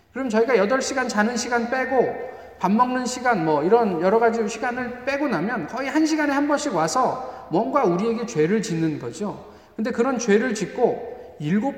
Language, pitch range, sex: Korean, 165-240 Hz, male